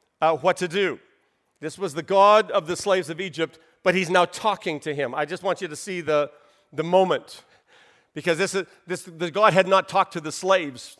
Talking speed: 220 wpm